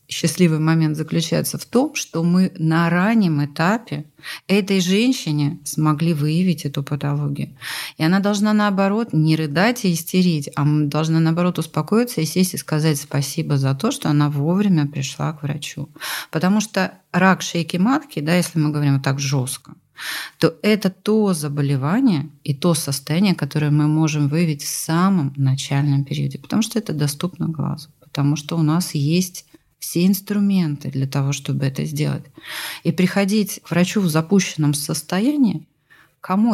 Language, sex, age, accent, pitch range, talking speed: Russian, female, 30-49, native, 145-180 Hz, 150 wpm